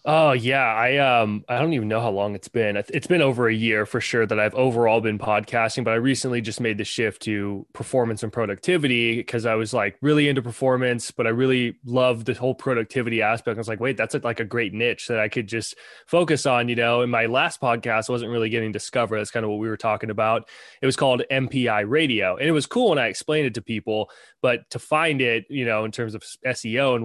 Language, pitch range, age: English, 110-130 Hz, 20-39